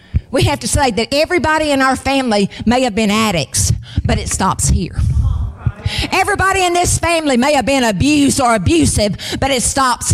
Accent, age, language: American, 40-59, English